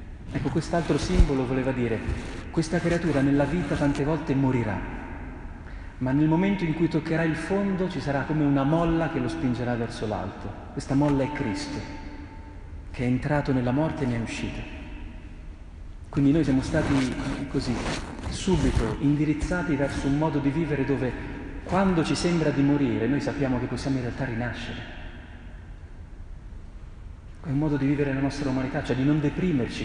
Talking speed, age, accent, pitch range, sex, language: 160 wpm, 40-59, native, 100-145 Hz, male, Italian